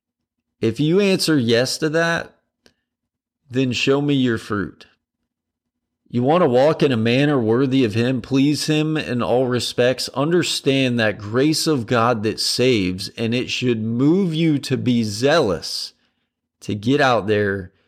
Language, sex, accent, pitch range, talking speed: English, male, American, 110-140 Hz, 150 wpm